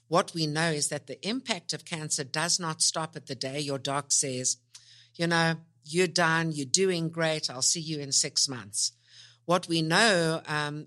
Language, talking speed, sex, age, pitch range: English, 195 wpm, female, 60-79, 135-165 Hz